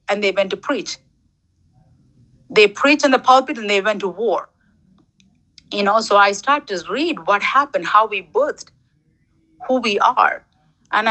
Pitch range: 205-285 Hz